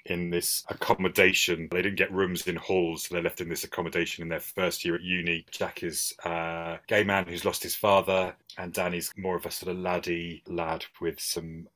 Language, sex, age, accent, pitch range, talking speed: English, male, 30-49, British, 85-115 Hz, 210 wpm